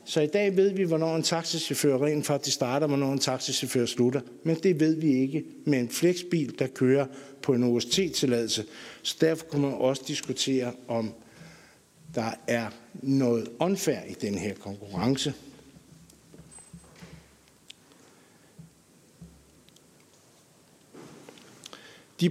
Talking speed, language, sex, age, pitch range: 120 wpm, Danish, male, 60-79, 130-175 Hz